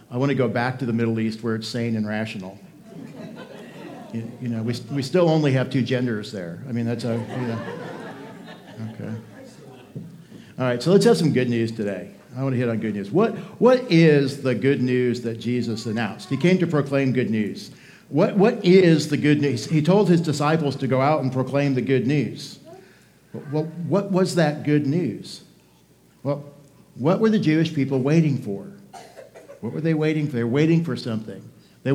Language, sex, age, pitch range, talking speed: English, male, 50-69, 120-155 Hz, 200 wpm